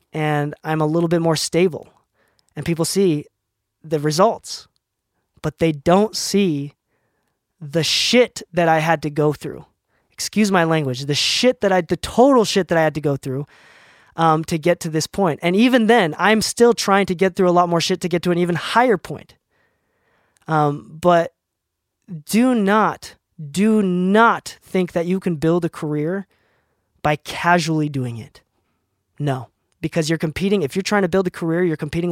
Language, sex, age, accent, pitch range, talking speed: English, male, 20-39, American, 150-185 Hz, 180 wpm